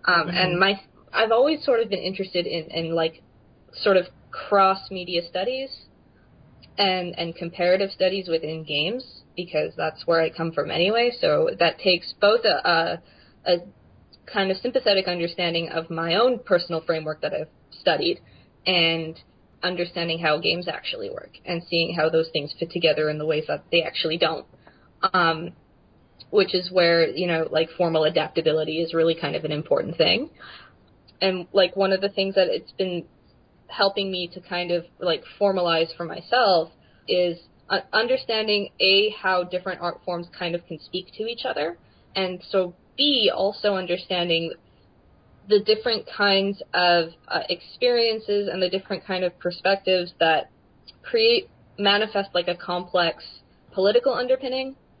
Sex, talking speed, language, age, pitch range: female, 155 wpm, English, 20-39, 170-200 Hz